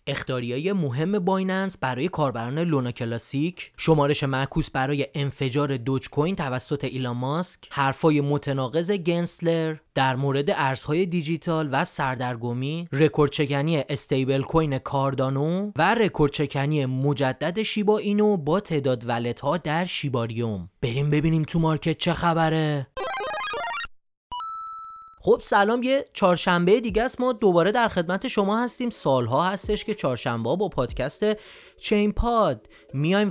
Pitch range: 140-215 Hz